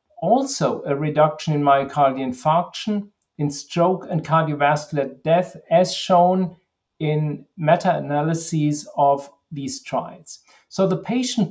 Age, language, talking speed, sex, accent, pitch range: 50-69, English, 110 wpm, male, German, 150-180 Hz